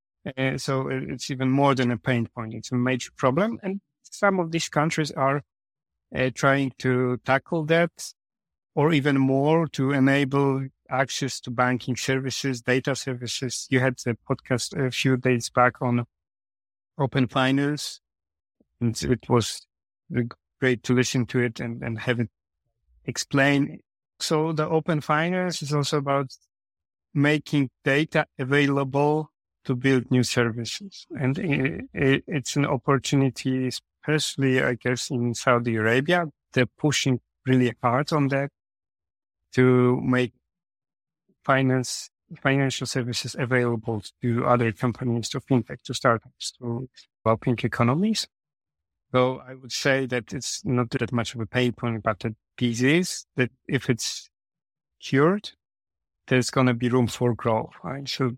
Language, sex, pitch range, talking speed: English, male, 120-140 Hz, 140 wpm